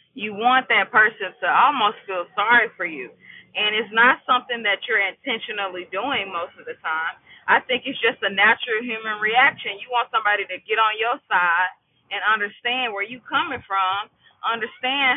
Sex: female